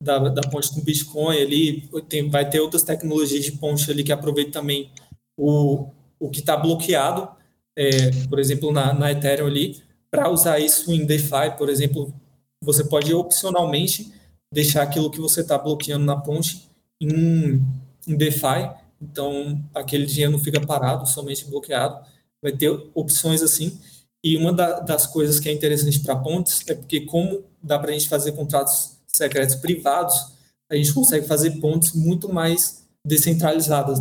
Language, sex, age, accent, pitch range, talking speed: Portuguese, male, 20-39, Brazilian, 140-160 Hz, 160 wpm